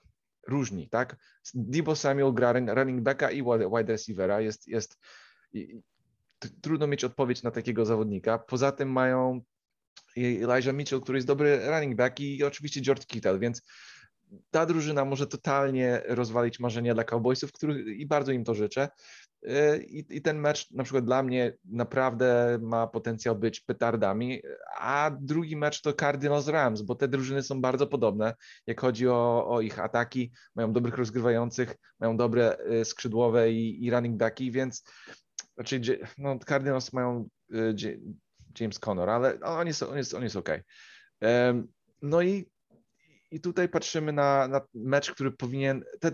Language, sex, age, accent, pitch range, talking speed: Polish, male, 30-49, native, 120-140 Hz, 140 wpm